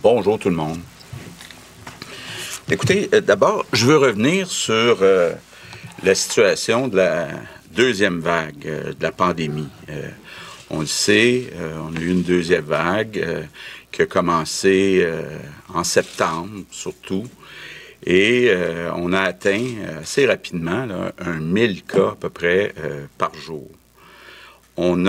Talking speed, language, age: 135 wpm, French, 60-79